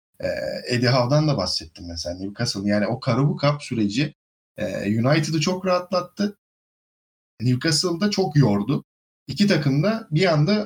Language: Turkish